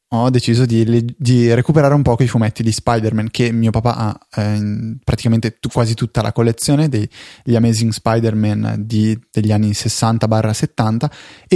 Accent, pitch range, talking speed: native, 110-140 Hz, 140 wpm